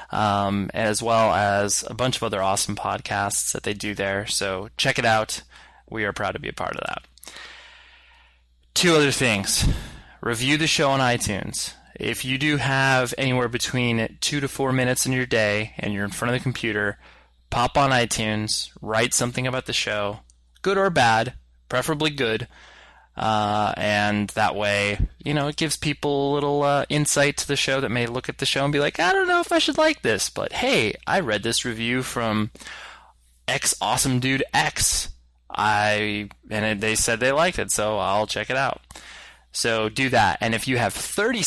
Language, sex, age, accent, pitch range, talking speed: English, male, 20-39, American, 105-140 Hz, 190 wpm